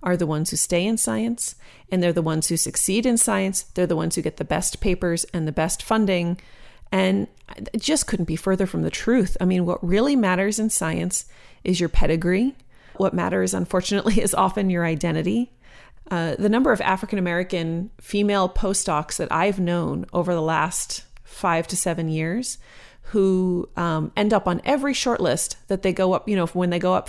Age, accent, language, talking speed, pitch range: 30-49, American, English, 195 wpm, 165-200 Hz